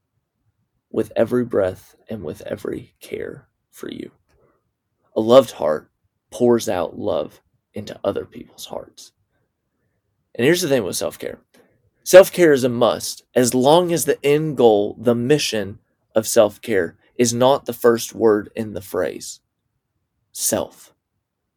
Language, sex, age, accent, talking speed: English, male, 30-49, American, 135 wpm